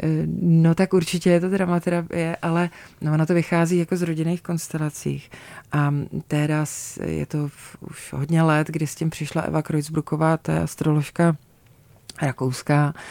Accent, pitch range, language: native, 145-165 Hz, Czech